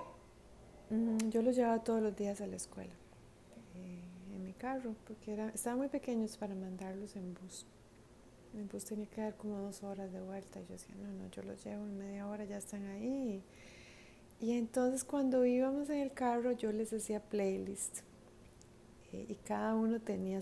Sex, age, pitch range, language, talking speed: female, 30-49, 180-220 Hz, Spanish, 180 wpm